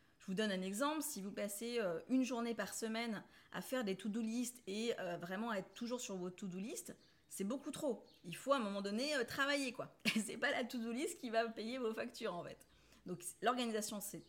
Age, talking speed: 30-49, 220 wpm